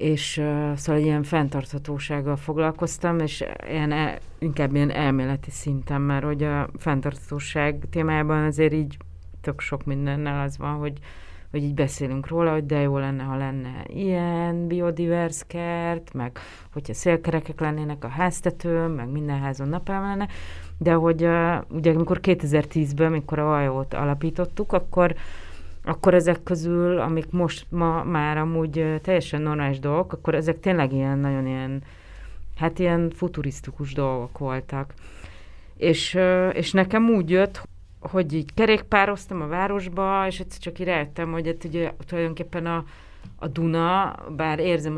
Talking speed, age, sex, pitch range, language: 140 wpm, 30-49, female, 135-170 Hz, Hungarian